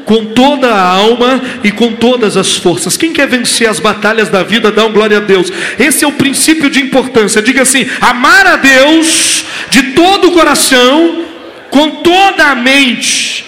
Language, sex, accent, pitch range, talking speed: Portuguese, male, Brazilian, 225-310 Hz, 180 wpm